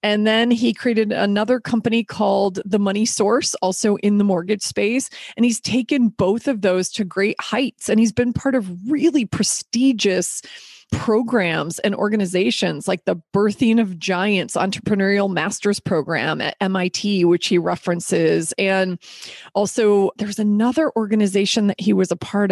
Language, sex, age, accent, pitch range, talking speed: English, female, 30-49, American, 190-230 Hz, 150 wpm